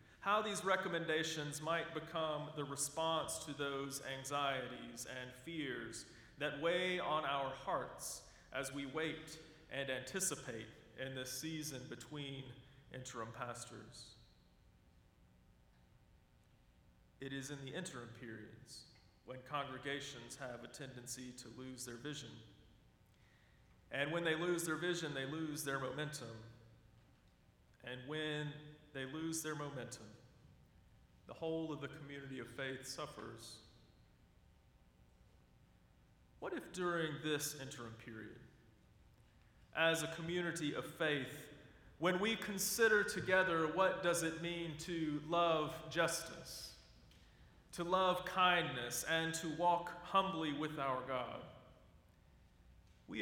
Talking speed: 115 wpm